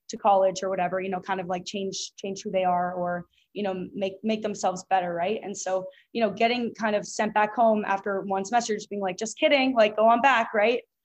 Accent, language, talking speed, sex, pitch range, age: American, English, 245 wpm, female, 185-220 Hz, 20-39